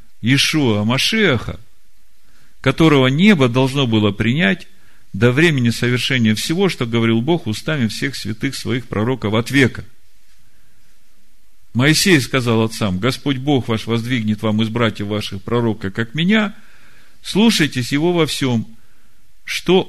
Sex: male